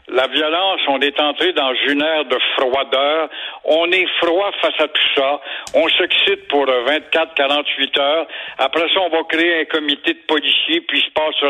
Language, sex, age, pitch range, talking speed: French, male, 60-79, 145-195 Hz, 190 wpm